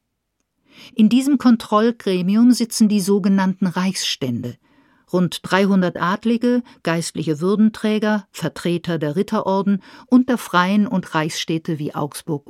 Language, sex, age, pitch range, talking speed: German, female, 50-69, 165-220 Hz, 105 wpm